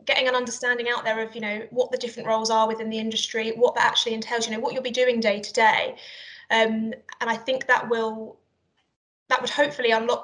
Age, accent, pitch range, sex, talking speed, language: 20-39, British, 220-250 Hz, female, 230 wpm, English